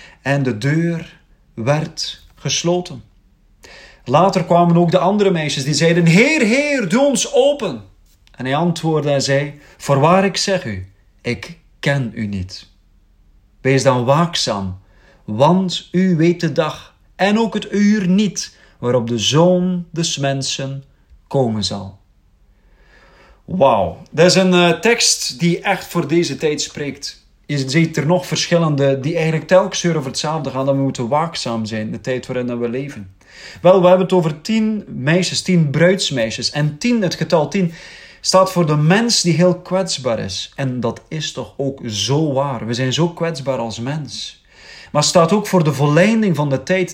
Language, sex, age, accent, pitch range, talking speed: Dutch, male, 40-59, Dutch, 130-180 Hz, 165 wpm